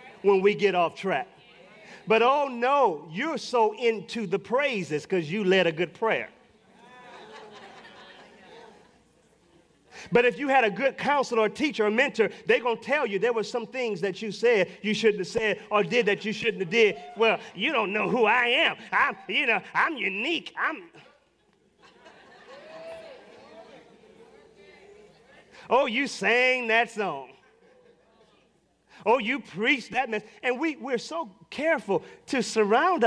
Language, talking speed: English, 145 wpm